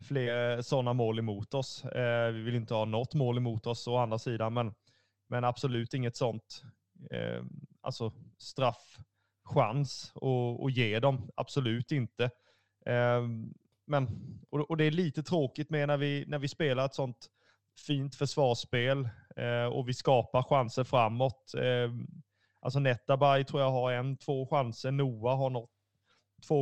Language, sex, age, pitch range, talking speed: Swedish, male, 30-49, 115-140 Hz, 155 wpm